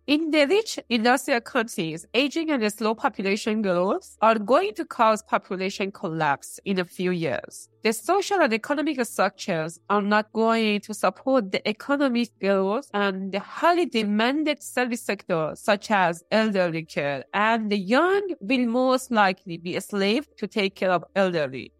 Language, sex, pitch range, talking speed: English, female, 190-270 Hz, 160 wpm